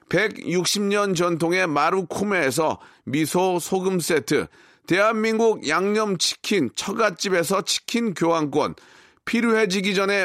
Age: 40-59